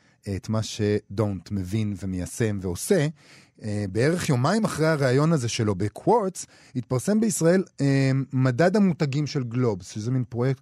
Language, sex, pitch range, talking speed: Hebrew, male, 110-175 Hz, 135 wpm